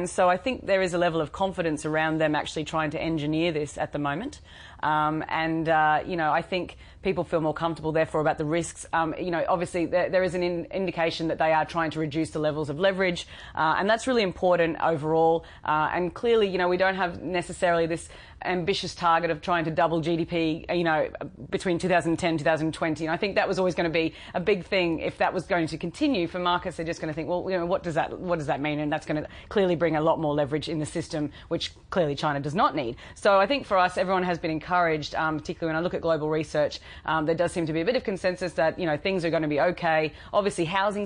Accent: Australian